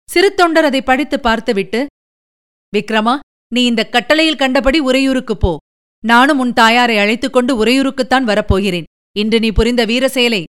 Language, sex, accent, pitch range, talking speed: Tamil, female, native, 215-290 Hz, 125 wpm